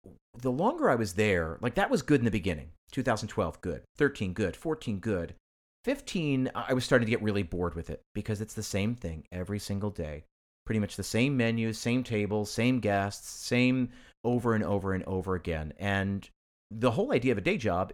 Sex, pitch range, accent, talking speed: male, 95-120 Hz, American, 200 wpm